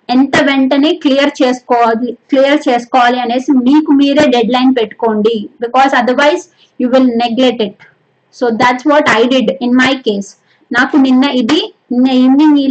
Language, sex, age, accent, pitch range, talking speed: Telugu, female, 20-39, native, 245-300 Hz, 150 wpm